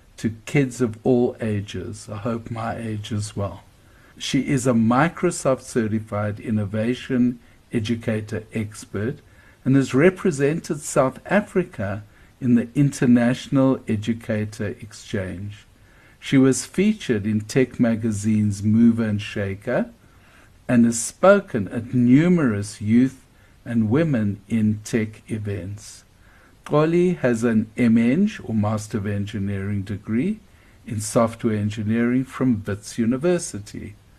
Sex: male